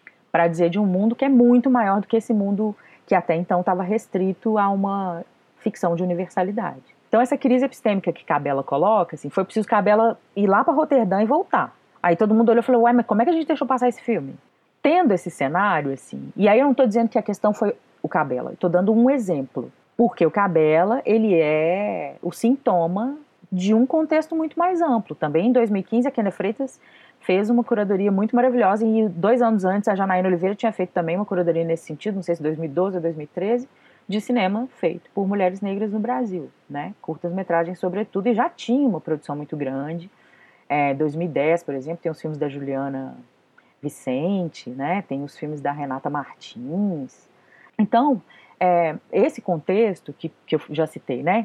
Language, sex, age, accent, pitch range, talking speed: Portuguese, female, 30-49, Brazilian, 165-230 Hz, 195 wpm